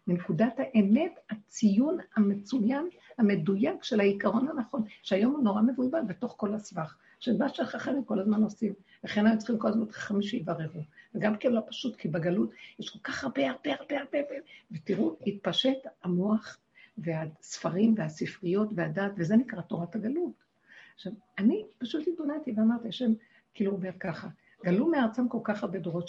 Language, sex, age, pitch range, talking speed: Hebrew, female, 60-79, 190-245 Hz, 155 wpm